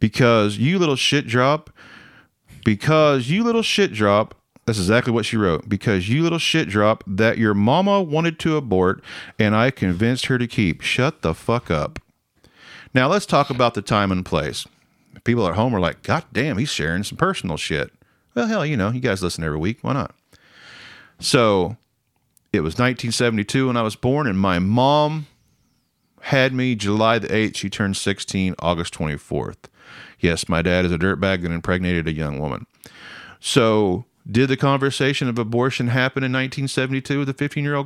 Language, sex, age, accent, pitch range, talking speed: English, male, 40-59, American, 95-130 Hz, 175 wpm